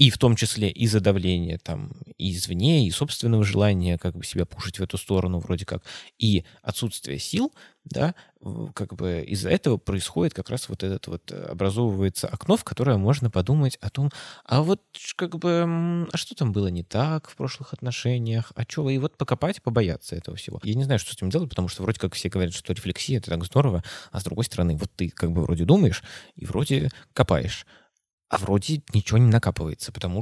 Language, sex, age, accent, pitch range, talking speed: Russian, male, 20-39, native, 90-125 Hz, 200 wpm